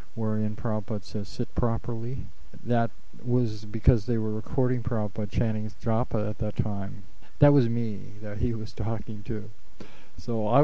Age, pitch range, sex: 40-59, 105-120 Hz, male